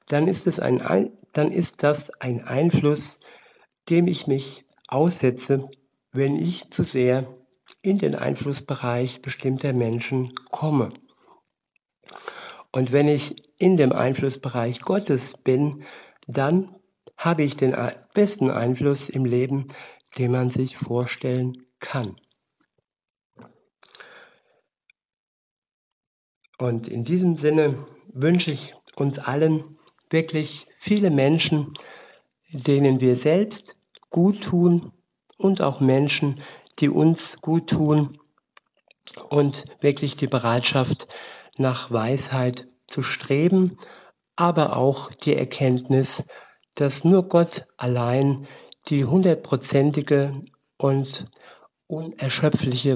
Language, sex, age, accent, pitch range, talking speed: German, male, 60-79, German, 130-160 Hz, 95 wpm